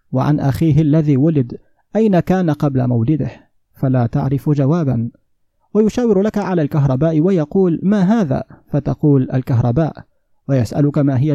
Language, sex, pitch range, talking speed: Arabic, male, 140-175 Hz, 120 wpm